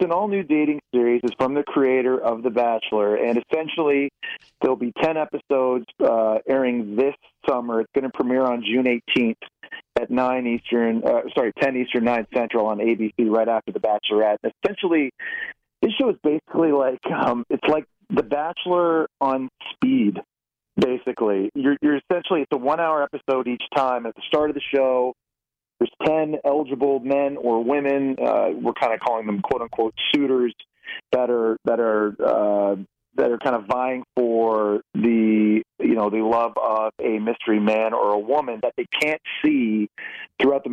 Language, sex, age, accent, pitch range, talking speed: English, male, 40-59, American, 115-145 Hz, 170 wpm